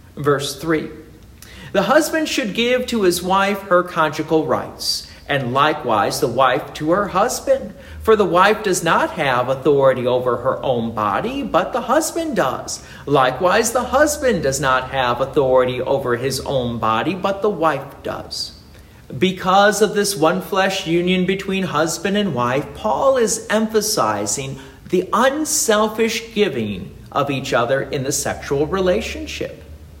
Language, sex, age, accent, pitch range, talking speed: English, male, 50-69, American, 135-210 Hz, 145 wpm